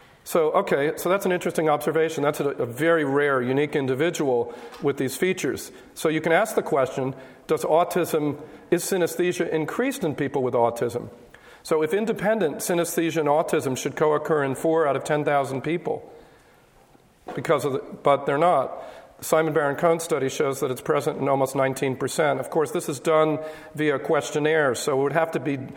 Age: 50-69